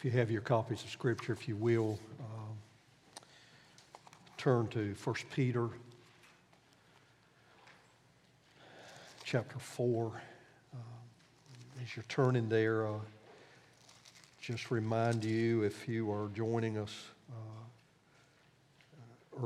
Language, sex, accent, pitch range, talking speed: English, male, American, 110-125 Hz, 100 wpm